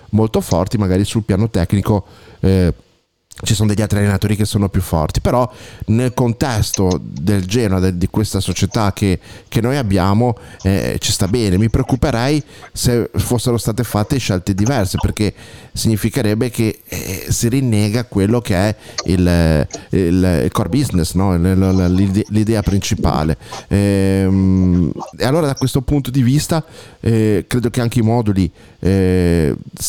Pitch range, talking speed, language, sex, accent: 95-110 Hz, 140 wpm, Italian, male, native